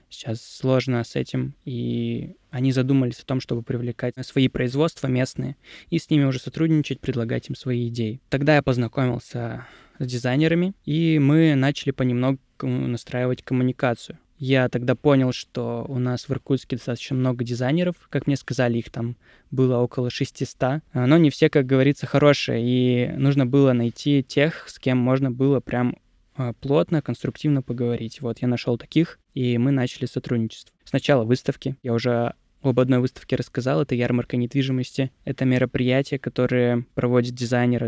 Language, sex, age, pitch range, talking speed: Russian, male, 20-39, 125-140 Hz, 150 wpm